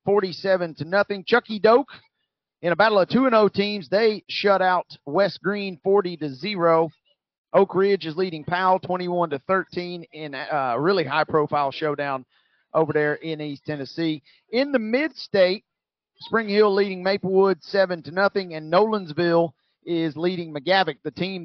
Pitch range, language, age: 160-205 Hz, English, 30-49